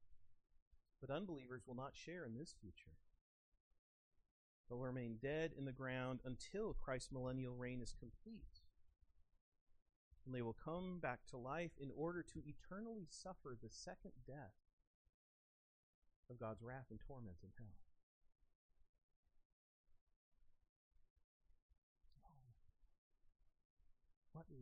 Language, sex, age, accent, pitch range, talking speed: English, male, 40-59, American, 80-135 Hz, 105 wpm